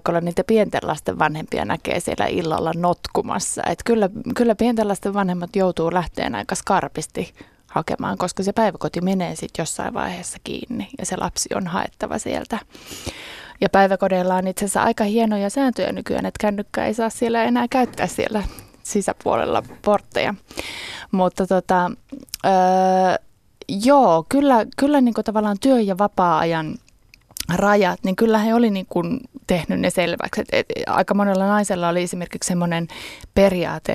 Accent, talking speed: native, 145 wpm